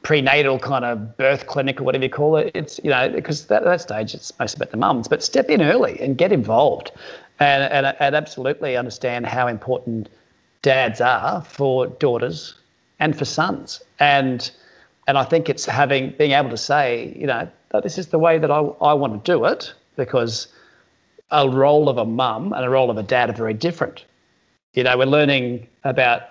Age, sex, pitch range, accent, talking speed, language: 40-59, male, 120-150 Hz, Australian, 200 wpm, English